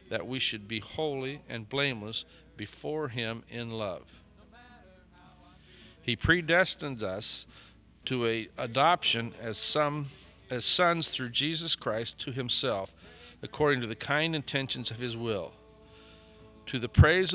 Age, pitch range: 50-69, 115-150 Hz